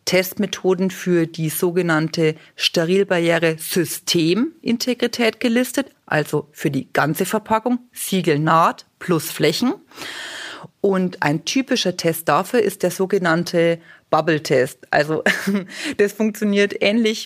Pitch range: 170-220 Hz